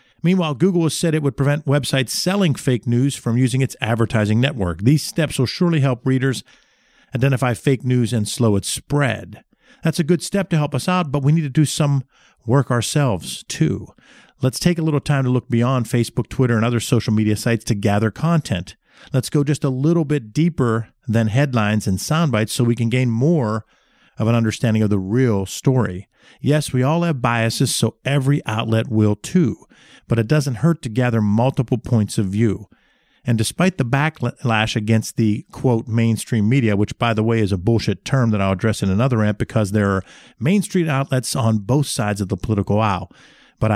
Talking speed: 195 wpm